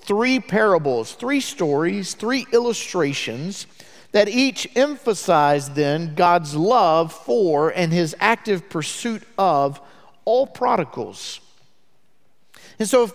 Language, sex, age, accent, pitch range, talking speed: English, male, 50-69, American, 155-230 Hz, 105 wpm